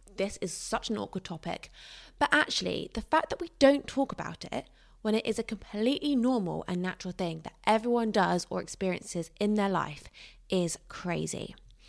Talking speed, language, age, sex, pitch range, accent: 175 wpm, English, 20-39, female, 180-235 Hz, British